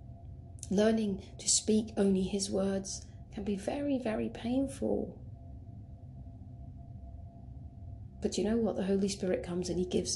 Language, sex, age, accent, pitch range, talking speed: English, female, 30-49, British, 165-205 Hz, 130 wpm